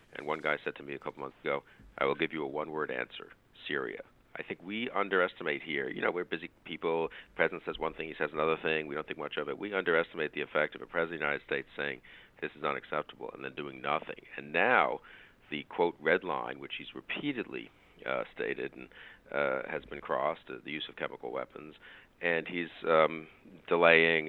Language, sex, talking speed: English, male, 215 wpm